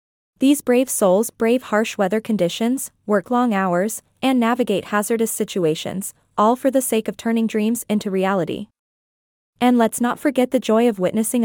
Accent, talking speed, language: American, 160 wpm, English